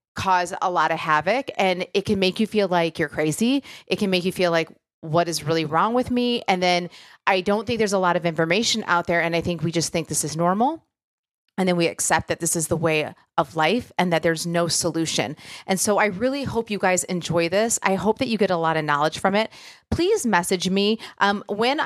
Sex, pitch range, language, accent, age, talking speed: female, 165-205 Hz, English, American, 30-49, 240 wpm